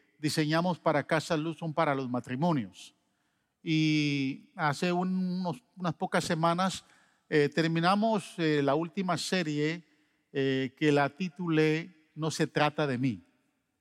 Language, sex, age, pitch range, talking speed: Spanish, male, 50-69, 140-175 Hz, 125 wpm